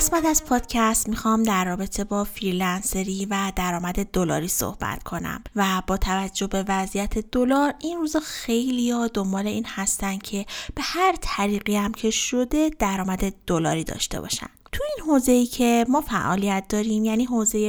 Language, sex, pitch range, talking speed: Persian, female, 200-255 Hz, 155 wpm